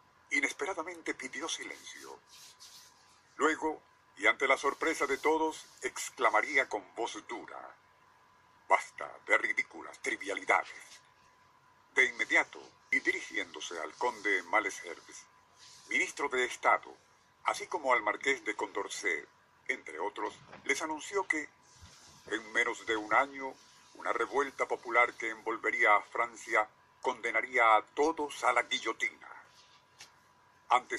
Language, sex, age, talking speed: Spanish, male, 50-69, 110 wpm